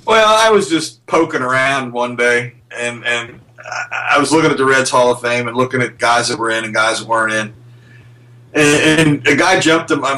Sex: male